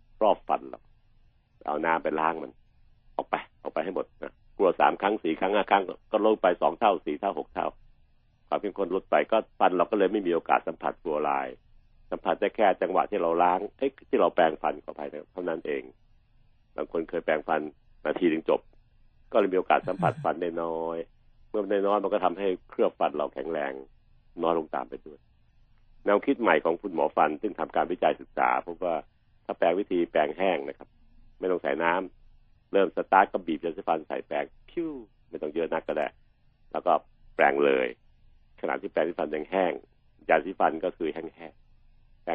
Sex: male